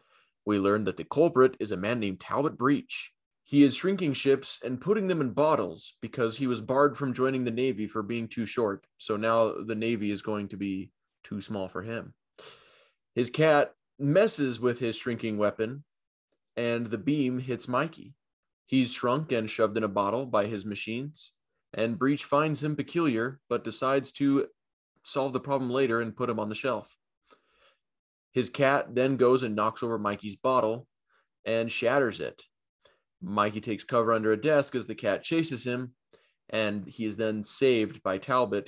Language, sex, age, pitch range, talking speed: English, male, 20-39, 110-135 Hz, 175 wpm